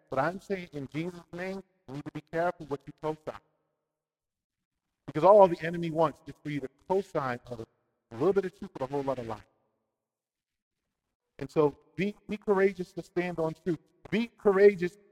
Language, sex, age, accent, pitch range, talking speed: English, male, 40-59, American, 135-170 Hz, 185 wpm